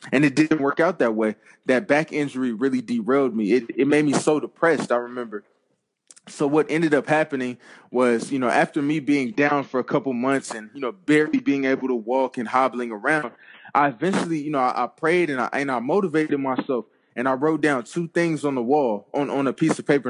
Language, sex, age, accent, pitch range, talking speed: English, male, 20-39, American, 130-155 Hz, 225 wpm